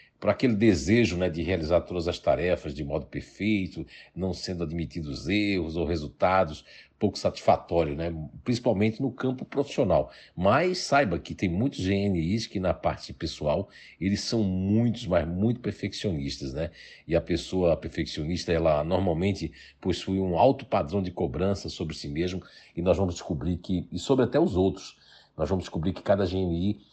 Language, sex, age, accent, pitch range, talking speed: Portuguese, male, 60-79, Brazilian, 85-100 Hz, 165 wpm